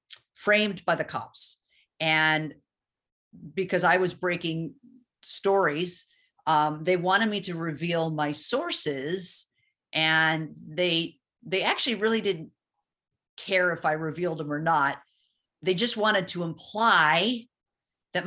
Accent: American